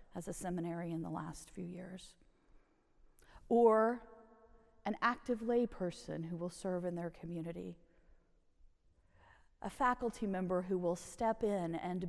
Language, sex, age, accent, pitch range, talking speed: English, female, 40-59, American, 180-255 Hz, 130 wpm